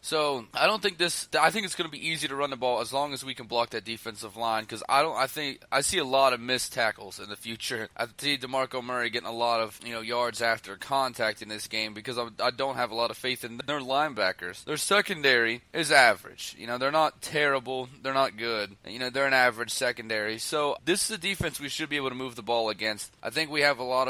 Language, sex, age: English, male, 20-39